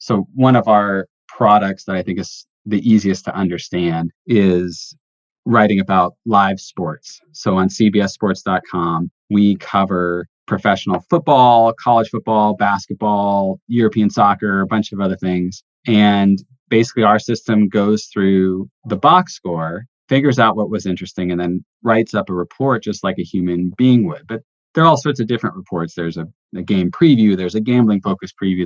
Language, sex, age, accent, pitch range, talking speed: English, male, 30-49, American, 90-115 Hz, 165 wpm